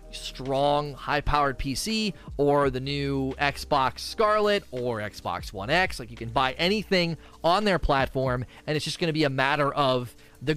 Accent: American